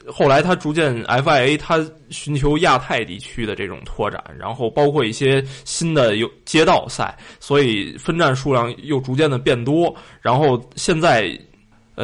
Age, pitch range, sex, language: 20-39, 120-150 Hz, male, Chinese